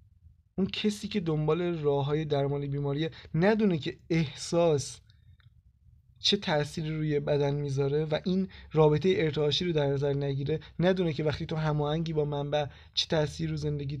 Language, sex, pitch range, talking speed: Persian, male, 145-180 Hz, 140 wpm